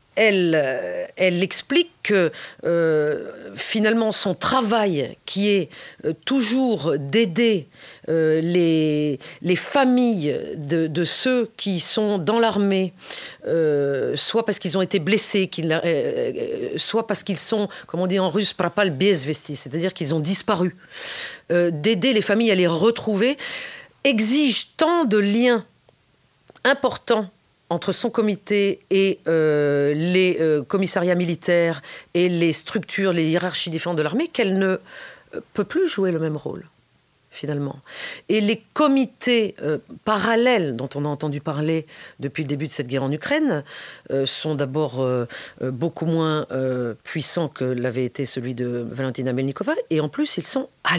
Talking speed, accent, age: 145 wpm, French, 40-59